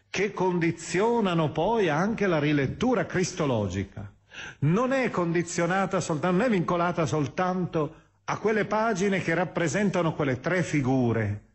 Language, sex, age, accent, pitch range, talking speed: Italian, male, 40-59, native, 115-180 Hz, 115 wpm